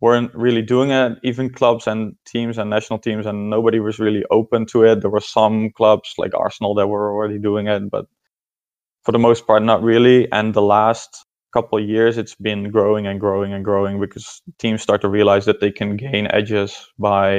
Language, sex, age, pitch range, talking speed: English, male, 20-39, 105-115 Hz, 205 wpm